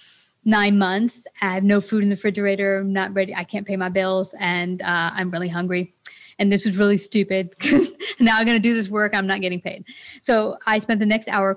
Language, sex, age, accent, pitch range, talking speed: English, female, 30-49, American, 190-230 Hz, 235 wpm